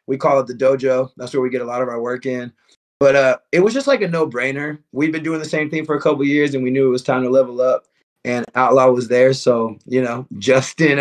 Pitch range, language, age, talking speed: 125-145 Hz, English, 30-49, 280 wpm